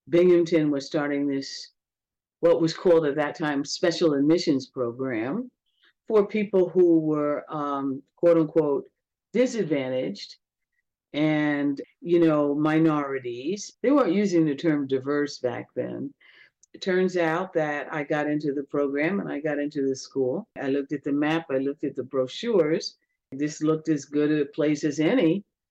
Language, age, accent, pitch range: English, 50-69, American, 145-170 Hz